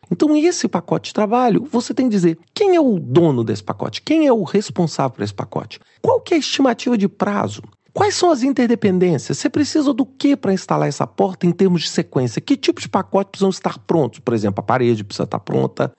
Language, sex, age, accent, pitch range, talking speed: Portuguese, male, 40-59, Brazilian, 165-255 Hz, 220 wpm